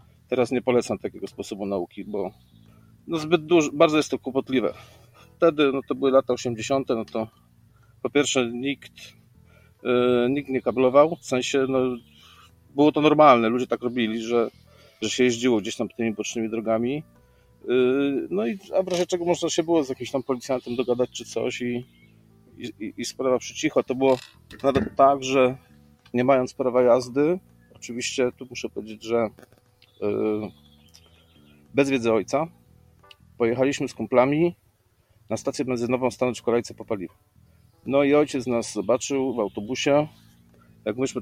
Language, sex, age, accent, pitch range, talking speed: Polish, male, 40-59, native, 110-135 Hz, 140 wpm